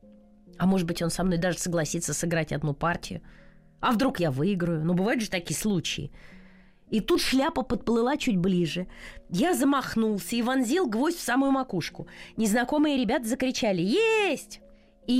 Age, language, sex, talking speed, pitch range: 20-39, Russian, female, 160 wpm, 185-285 Hz